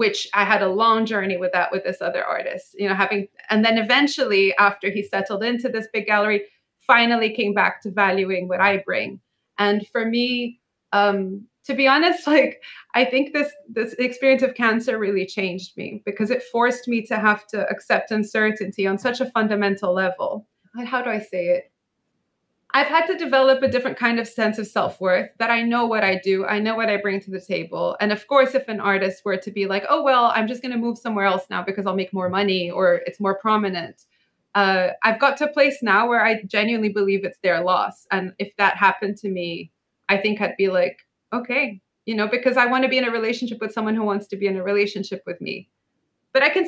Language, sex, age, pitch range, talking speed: English, female, 20-39, 195-245 Hz, 225 wpm